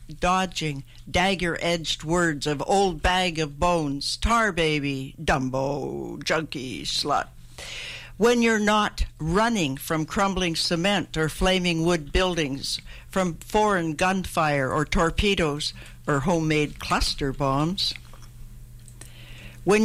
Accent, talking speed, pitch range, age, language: American, 105 wpm, 125-180 Hz, 60-79, English